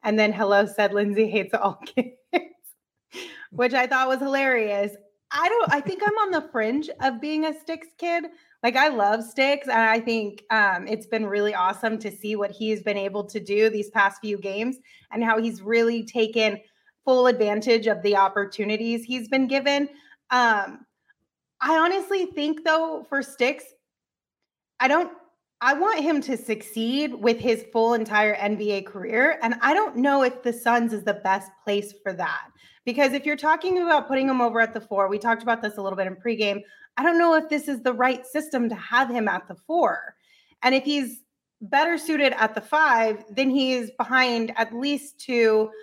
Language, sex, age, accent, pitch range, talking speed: English, female, 30-49, American, 215-280 Hz, 190 wpm